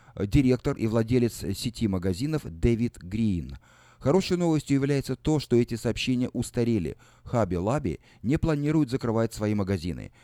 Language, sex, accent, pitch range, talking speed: Russian, male, native, 100-130 Hz, 130 wpm